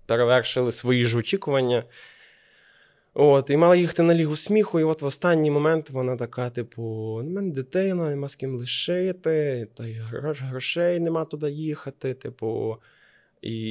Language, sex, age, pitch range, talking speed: Ukrainian, male, 20-39, 115-145 Hz, 140 wpm